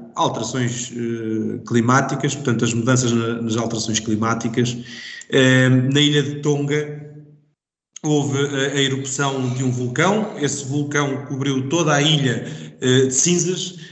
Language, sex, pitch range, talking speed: Portuguese, male, 130-150 Hz, 130 wpm